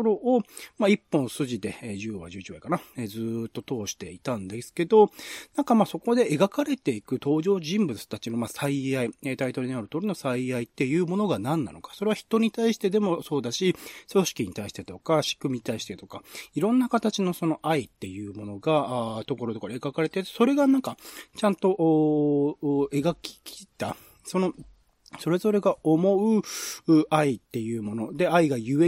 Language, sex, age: Japanese, male, 40-59